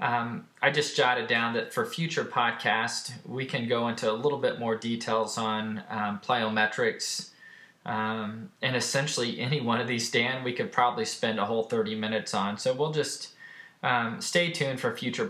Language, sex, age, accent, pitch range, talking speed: English, male, 20-39, American, 110-130 Hz, 180 wpm